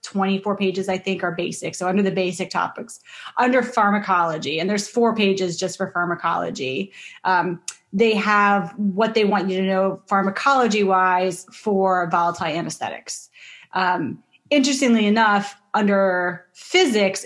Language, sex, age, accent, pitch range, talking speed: English, female, 30-49, American, 185-210 Hz, 130 wpm